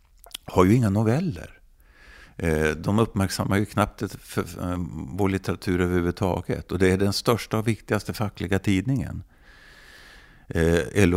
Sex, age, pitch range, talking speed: male, 50-69, 75-100 Hz, 120 wpm